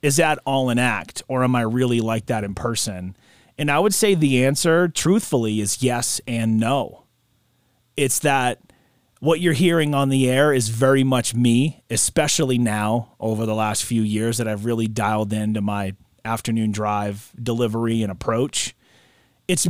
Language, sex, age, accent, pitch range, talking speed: English, male, 30-49, American, 110-150 Hz, 170 wpm